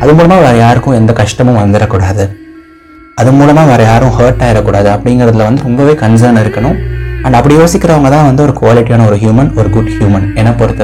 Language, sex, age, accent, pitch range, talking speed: Tamil, male, 30-49, native, 105-135 Hz, 175 wpm